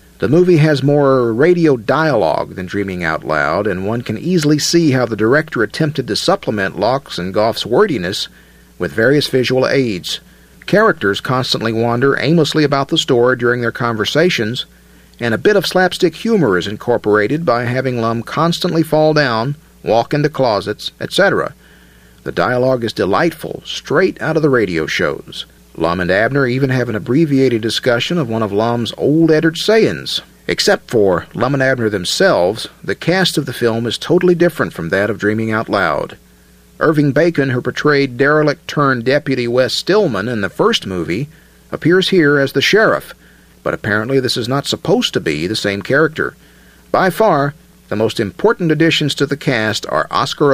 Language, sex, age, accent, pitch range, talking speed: English, male, 50-69, American, 110-150 Hz, 165 wpm